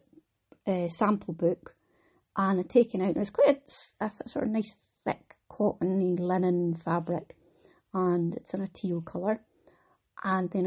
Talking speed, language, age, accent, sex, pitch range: 155 wpm, English, 30-49, British, female, 170-215 Hz